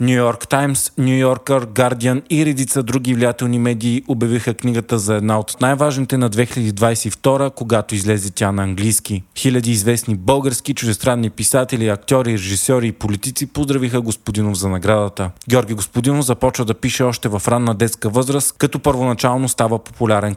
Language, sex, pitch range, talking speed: Bulgarian, male, 110-130 Hz, 145 wpm